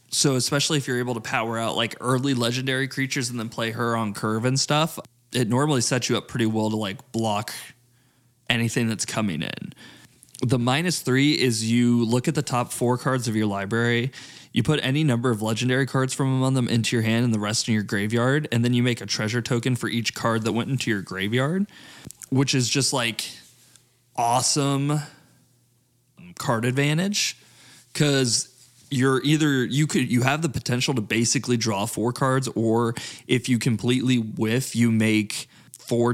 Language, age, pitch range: English, 20-39, 115-135 Hz